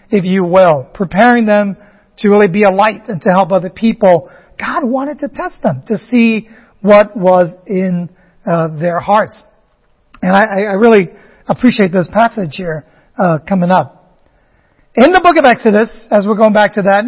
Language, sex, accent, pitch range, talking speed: English, male, American, 185-235 Hz, 175 wpm